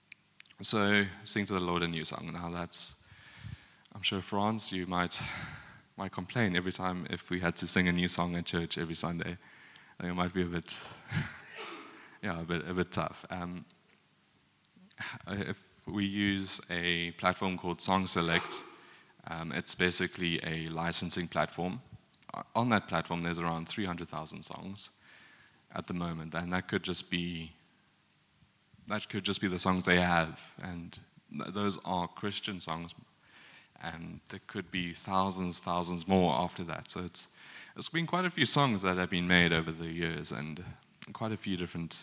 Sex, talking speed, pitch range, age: male, 165 wpm, 85-100 Hz, 20-39